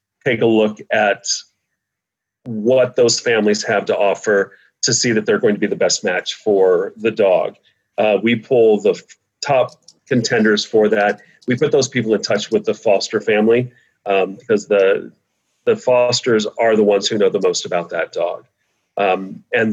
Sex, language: male, English